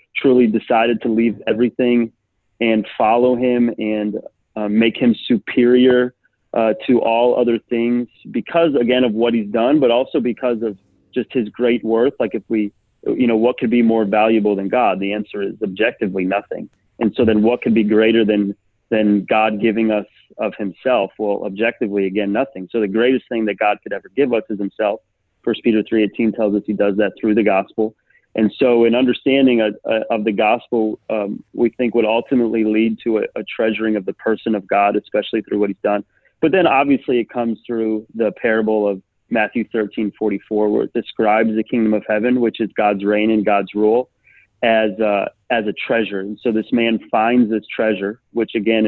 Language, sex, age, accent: English, male, 30-49, American